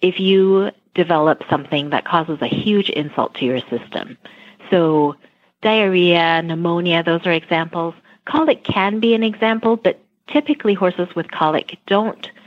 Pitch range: 145-195 Hz